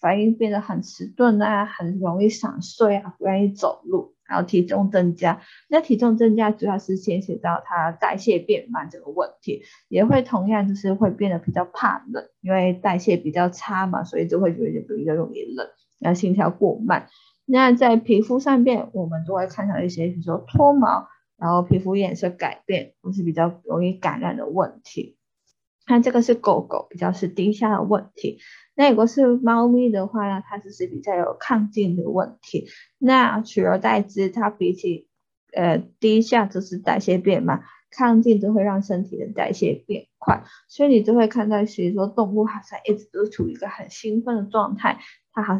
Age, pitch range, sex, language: 20-39, 185-230 Hz, female, Chinese